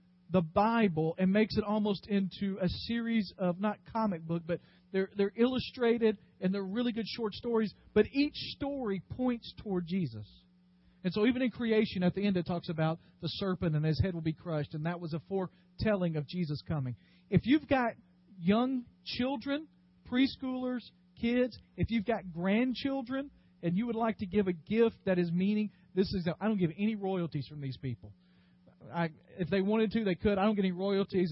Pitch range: 170-215 Hz